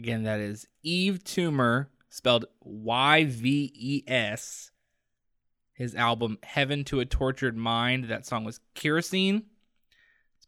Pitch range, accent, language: 115-140 Hz, American, English